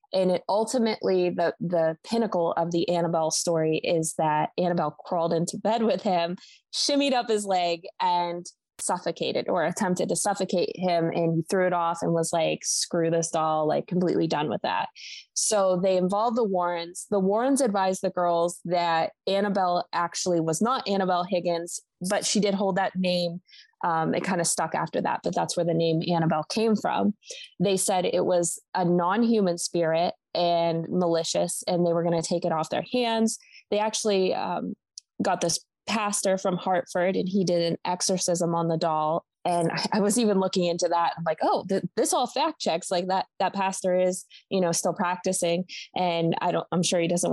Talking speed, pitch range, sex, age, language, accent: 190 wpm, 170-200 Hz, female, 20-39, English, American